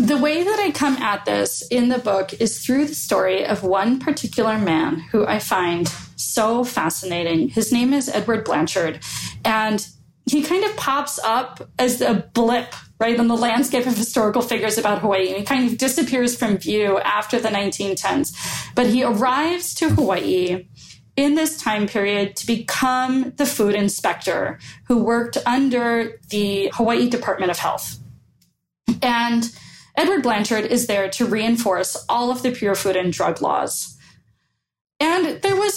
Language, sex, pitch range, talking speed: English, female, 200-255 Hz, 160 wpm